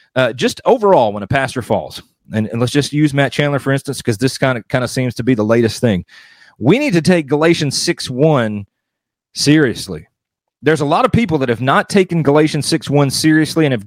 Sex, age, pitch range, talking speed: male, 30-49, 125-165 Hz, 225 wpm